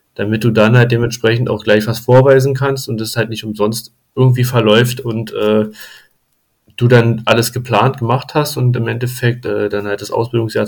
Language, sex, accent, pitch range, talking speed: German, male, German, 110-130 Hz, 185 wpm